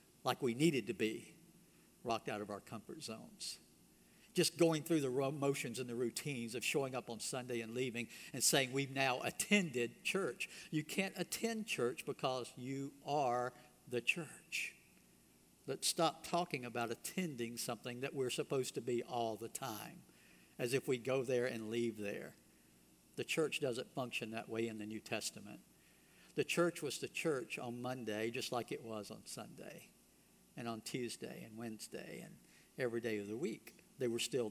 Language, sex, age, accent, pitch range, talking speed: English, male, 60-79, American, 115-150 Hz, 175 wpm